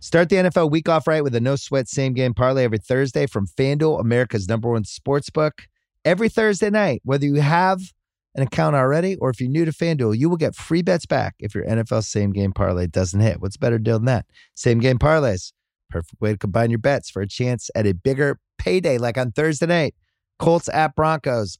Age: 30-49